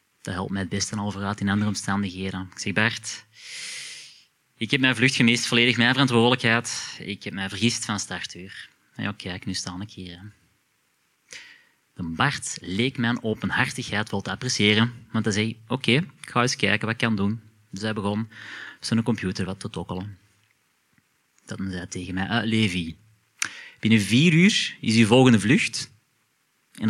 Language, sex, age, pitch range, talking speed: Dutch, male, 30-49, 100-125 Hz, 175 wpm